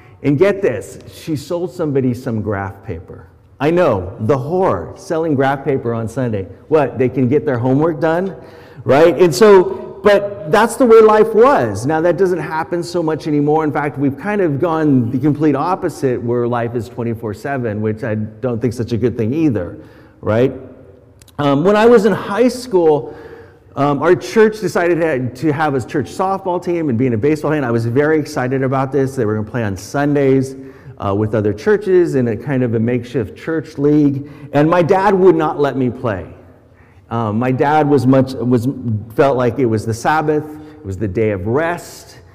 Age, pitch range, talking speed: 40-59, 120-165 Hz, 195 wpm